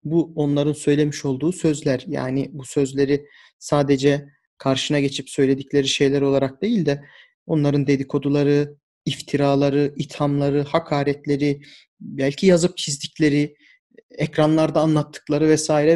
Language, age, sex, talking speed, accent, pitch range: Turkish, 40-59, male, 100 wpm, native, 140-175 Hz